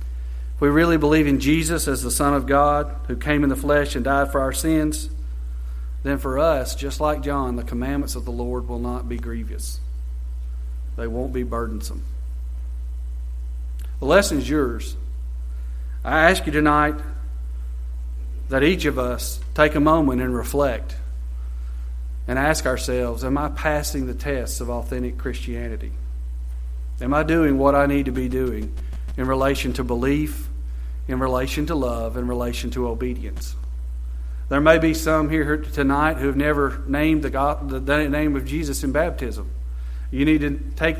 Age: 40-59